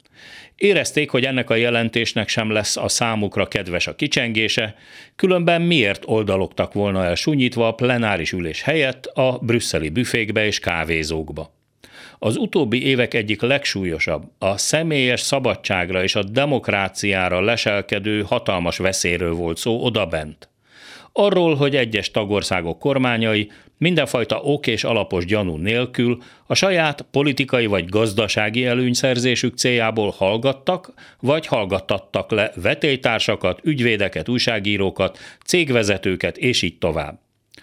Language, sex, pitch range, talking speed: Hungarian, male, 95-135 Hz, 115 wpm